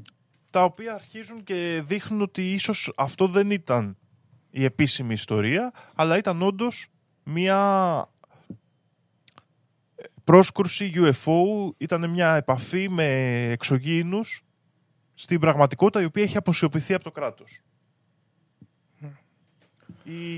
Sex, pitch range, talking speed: male, 125-185 Hz, 100 wpm